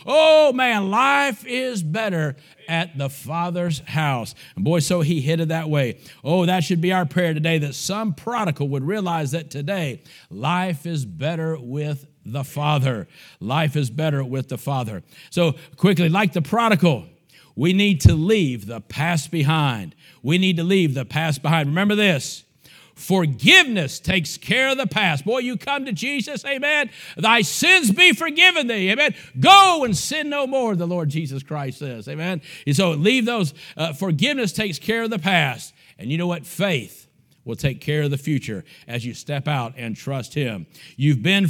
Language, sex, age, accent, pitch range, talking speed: English, male, 50-69, American, 145-195 Hz, 180 wpm